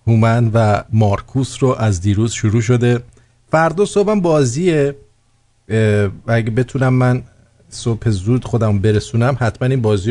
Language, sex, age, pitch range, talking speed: English, male, 50-69, 115-145 Hz, 130 wpm